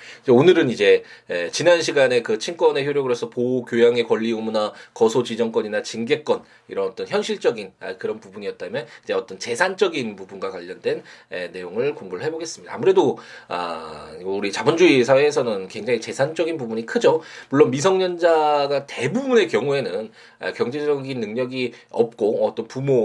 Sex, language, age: male, Korean, 20-39